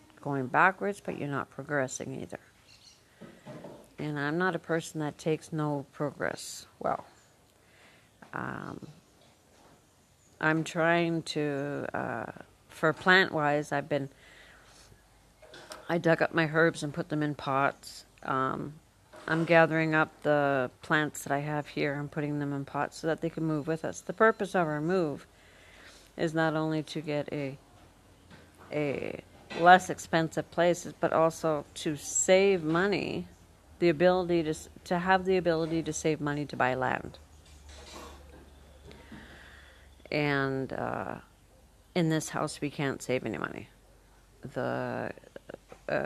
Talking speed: 135 wpm